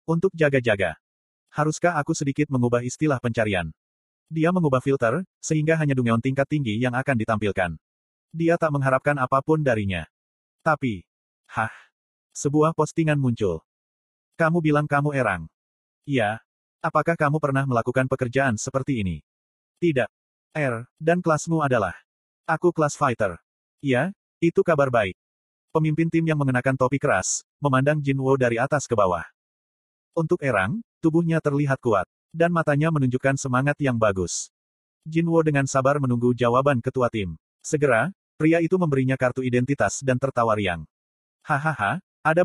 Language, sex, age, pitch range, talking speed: Indonesian, male, 30-49, 115-155 Hz, 135 wpm